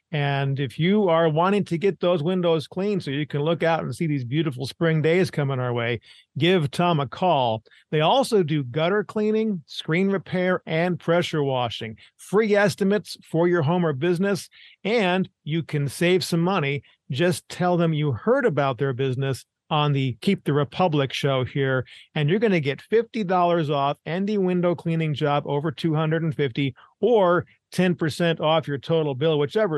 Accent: American